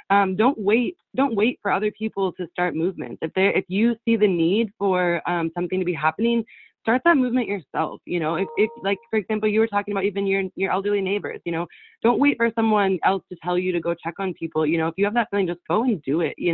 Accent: American